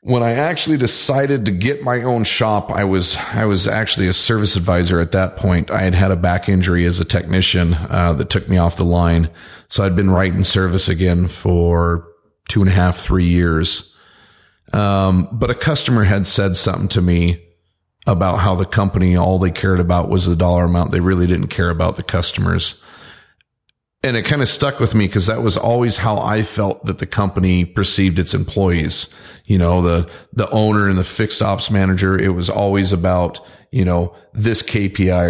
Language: English